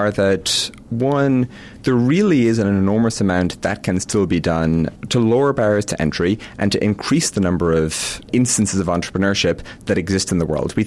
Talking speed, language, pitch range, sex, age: 190 wpm, English, 85-115 Hz, male, 30-49